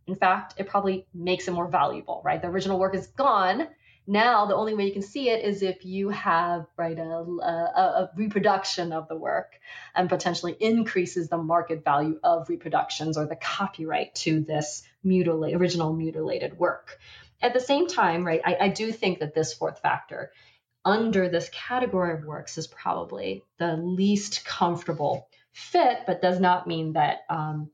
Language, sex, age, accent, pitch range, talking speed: English, female, 20-39, American, 170-220 Hz, 175 wpm